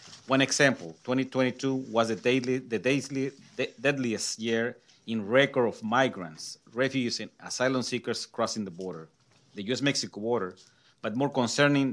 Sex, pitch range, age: male, 105-130 Hz, 40-59